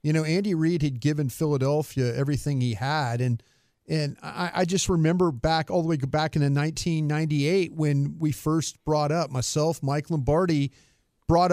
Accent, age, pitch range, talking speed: American, 40-59, 140-170 Hz, 165 wpm